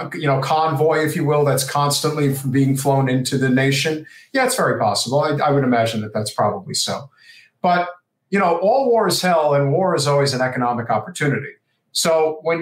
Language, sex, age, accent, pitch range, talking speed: English, male, 50-69, American, 130-165 Hz, 190 wpm